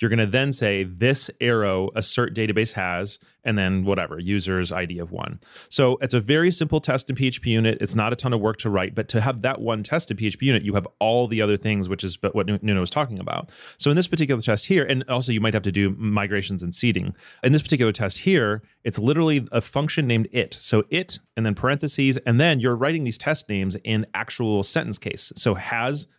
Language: English